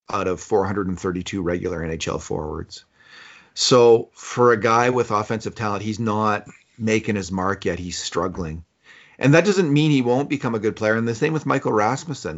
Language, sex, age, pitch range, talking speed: English, male, 40-59, 95-120 Hz, 180 wpm